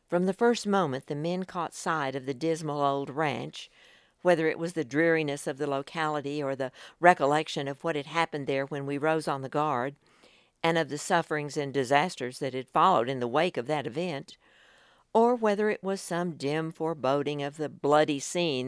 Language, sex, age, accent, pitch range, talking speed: English, female, 60-79, American, 140-175 Hz, 195 wpm